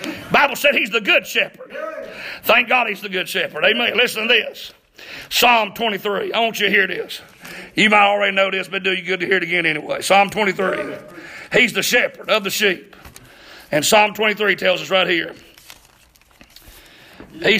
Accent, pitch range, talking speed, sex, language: American, 200-315 Hz, 185 wpm, male, English